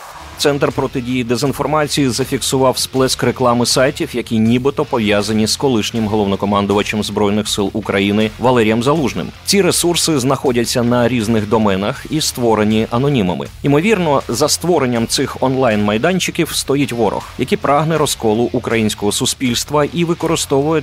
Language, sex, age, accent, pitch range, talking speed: Ukrainian, male, 30-49, native, 105-140 Hz, 120 wpm